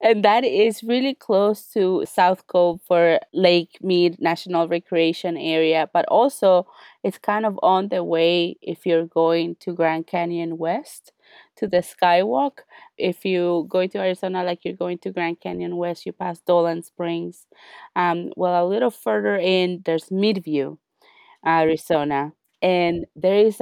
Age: 20-39